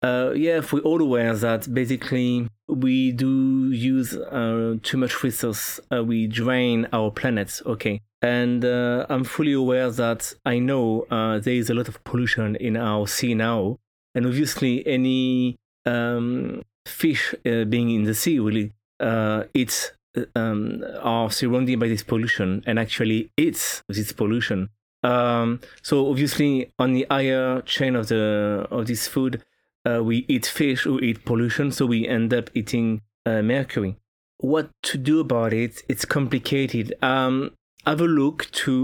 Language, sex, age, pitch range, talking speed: English, male, 30-49, 115-130 Hz, 160 wpm